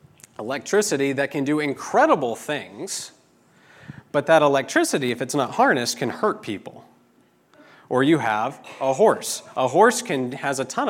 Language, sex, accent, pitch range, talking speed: English, male, American, 110-145 Hz, 150 wpm